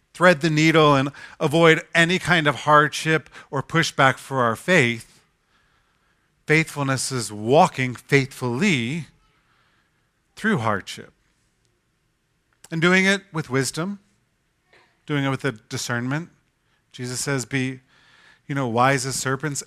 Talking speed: 115 wpm